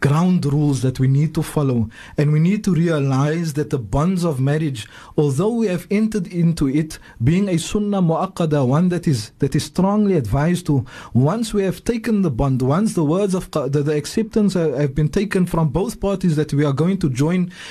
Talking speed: 200 wpm